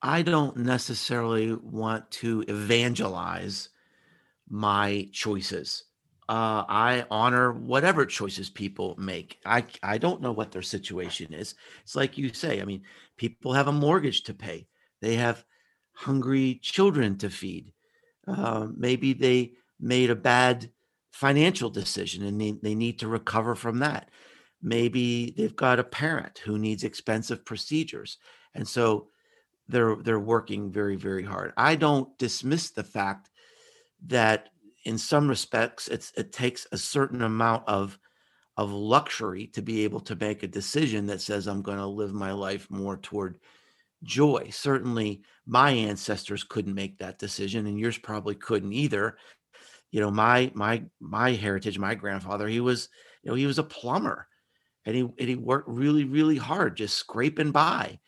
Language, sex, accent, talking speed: English, male, American, 155 wpm